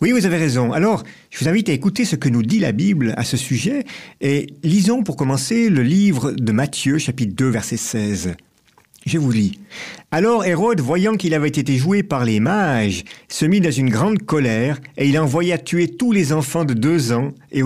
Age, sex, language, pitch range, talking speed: 50-69, male, French, 125-185 Hz, 205 wpm